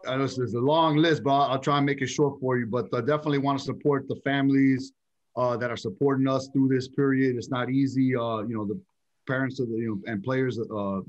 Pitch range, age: 110-130 Hz, 30-49